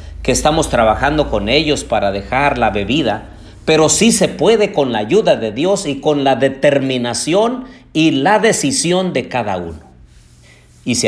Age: 50-69